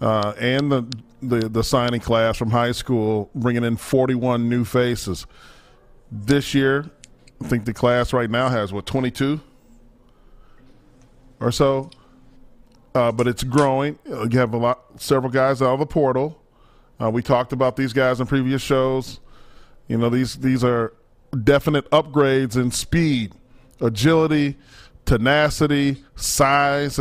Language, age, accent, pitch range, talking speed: English, 40-59, American, 120-135 Hz, 140 wpm